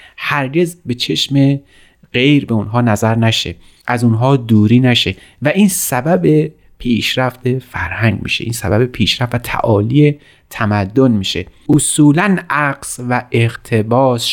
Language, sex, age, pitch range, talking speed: Persian, male, 30-49, 110-135 Hz, 120 wpm